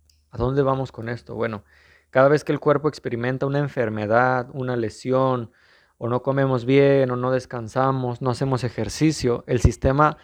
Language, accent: Spanish, Mexican